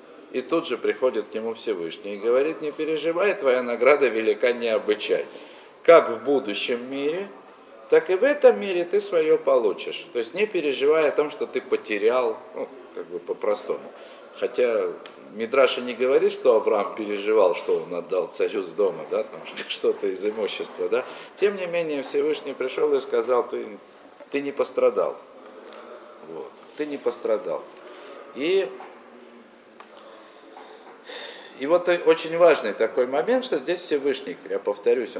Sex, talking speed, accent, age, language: male, 145 wpm, native, 50-69, Russian